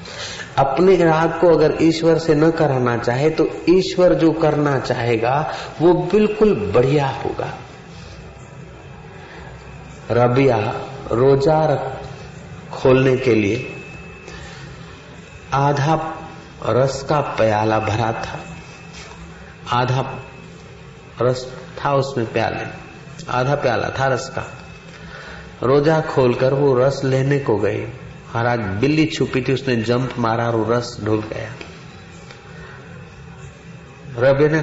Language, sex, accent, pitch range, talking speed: Hindi, male, native, 115-150 Hz, 100 wpm